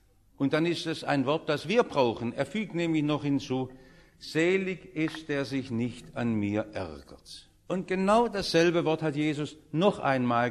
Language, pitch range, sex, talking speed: English, 130-220 Hz, male, 175 wpm